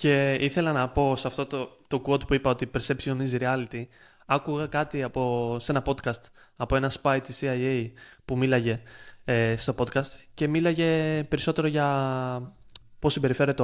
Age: 20-39